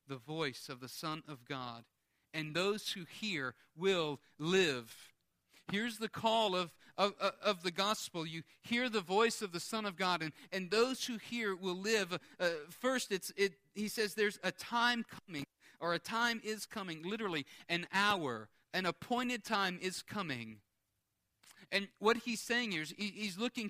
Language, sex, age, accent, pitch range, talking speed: English, male, 40-59, American, 150-215 Hz, 170 wpm